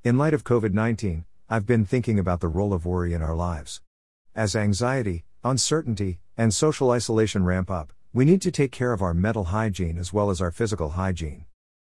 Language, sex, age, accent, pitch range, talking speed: English, male, 50-69, American, 85-115 Hz, 190 wpm